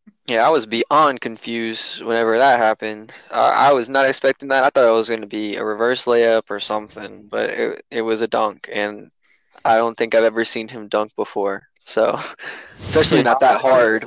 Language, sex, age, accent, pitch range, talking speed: English, male, 20-39, American, 115-130 Hz, 200 wpm